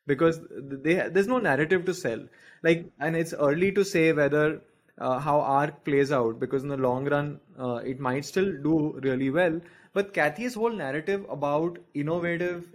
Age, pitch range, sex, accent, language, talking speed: 20-39, 140-185 Hz, male, Indian, English, 175 wpm